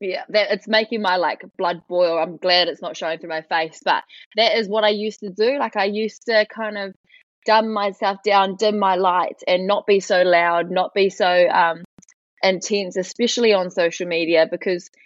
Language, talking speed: English, 205 wpm